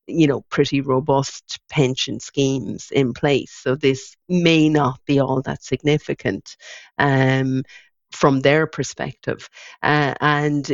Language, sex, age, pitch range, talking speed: English, female, 50-69, 130-145 Hz, 125 wpm